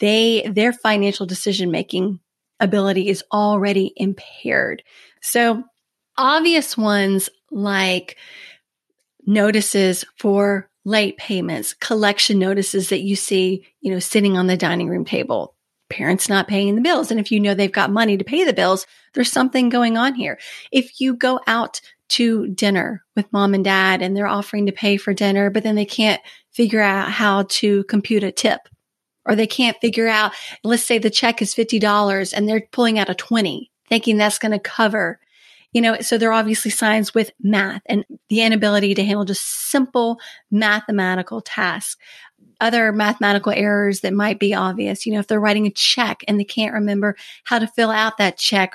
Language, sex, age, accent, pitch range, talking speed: English, female, 30-49, American, 200-225 Hz, 175 wpm